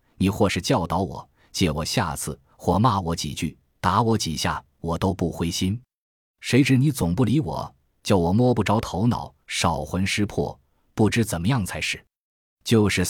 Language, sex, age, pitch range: Chinese, male, 20-39, 85-110 Hz